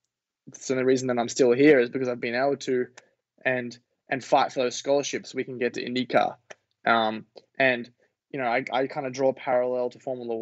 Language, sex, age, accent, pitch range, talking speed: English, male, 20-39, Australian, 120-150 Hz, 215 wpm